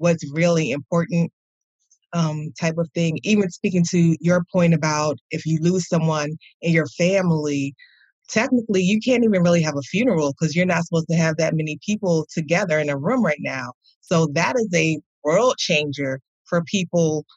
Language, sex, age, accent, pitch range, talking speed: English, female, 30-49, American, 155-175 Hz, 175 wpm